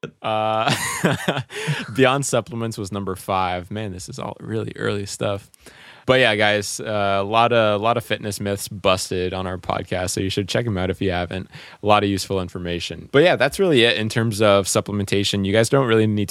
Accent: American